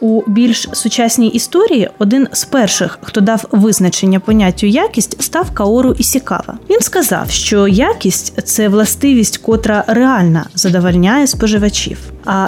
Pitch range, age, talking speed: 200-250 Hz, 20-39, 130 wpm